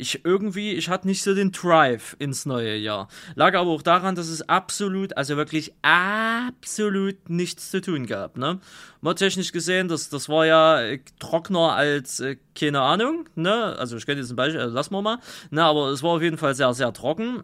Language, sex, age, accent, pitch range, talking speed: German, male, 20-39, German, 135-175 Hz, 205 wpm